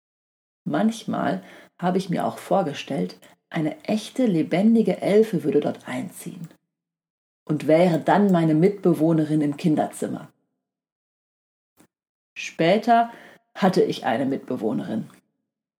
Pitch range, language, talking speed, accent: 155-205 Hz, German, 95 wpm, German